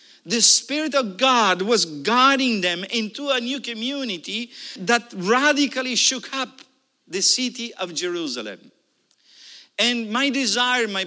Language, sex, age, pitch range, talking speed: English, male, 50-69, 190-265 Hz, 125 wpm